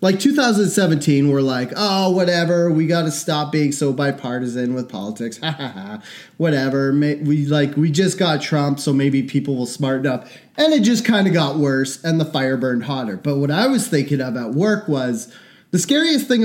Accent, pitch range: American, 130-165 Hz